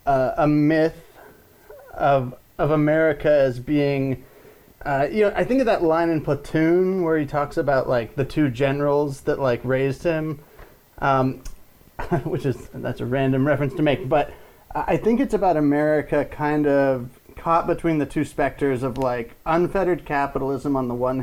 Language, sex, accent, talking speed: English, male, American, 165 wpm